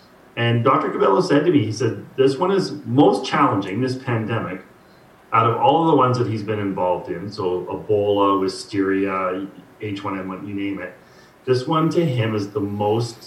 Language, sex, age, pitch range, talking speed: English, male, 40-59, 105-145 Hz, 195 wpm